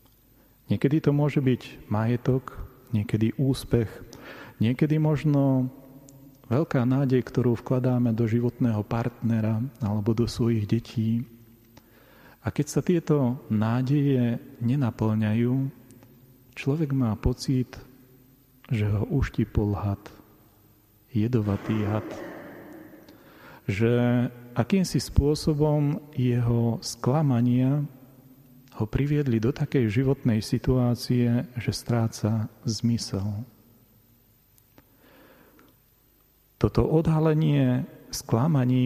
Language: Slovak